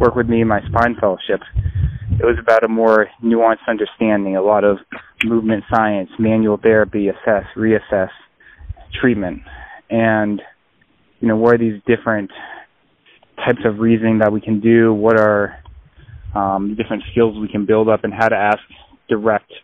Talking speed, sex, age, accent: 160 wpm, male, 20-39, American